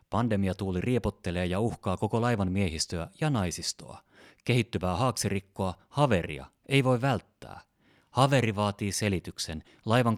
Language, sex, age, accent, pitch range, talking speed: Finnish, male, 30-49, native, 95-130 Hz, 110 wpm